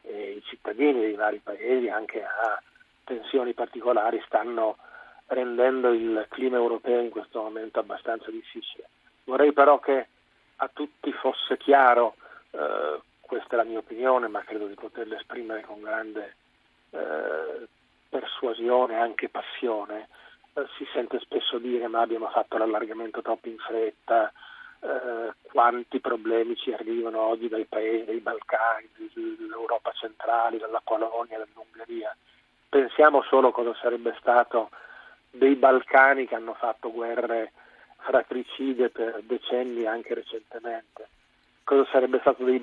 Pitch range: 115-135 Hz